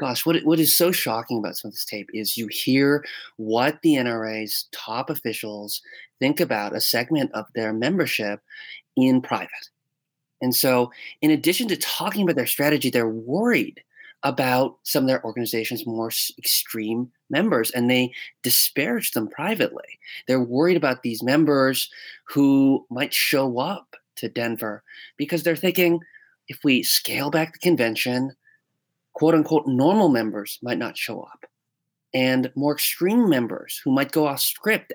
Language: English